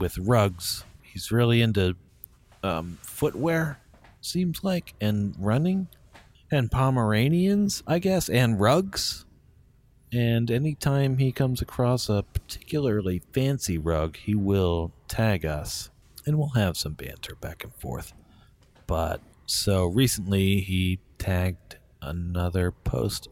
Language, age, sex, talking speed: English, 40-59, male, 120 wpm